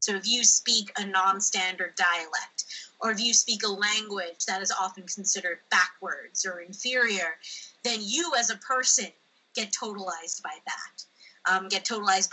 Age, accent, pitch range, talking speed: 30-49, American, 190-235 Hz, 155 wpm